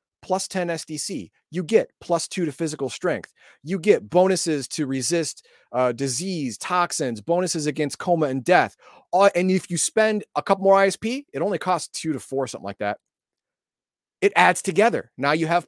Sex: male